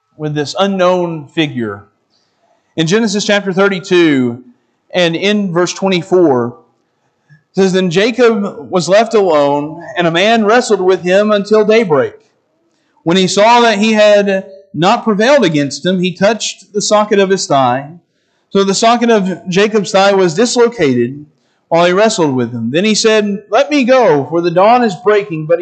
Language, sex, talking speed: English, male, 160 wpm